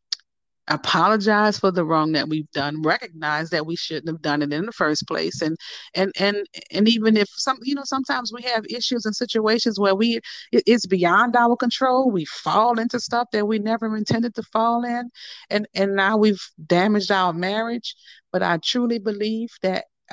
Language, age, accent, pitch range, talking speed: English, 40-59, American, 175-230 Hz, 185 wpm